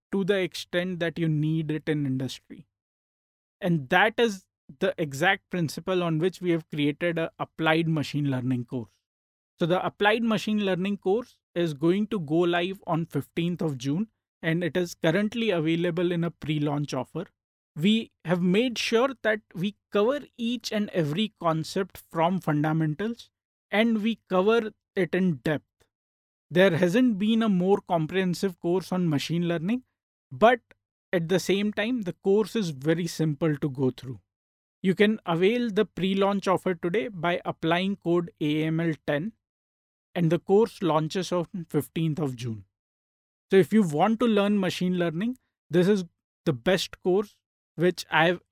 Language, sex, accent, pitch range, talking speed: English, male, Indian, 155-200 Hz, 155 wpm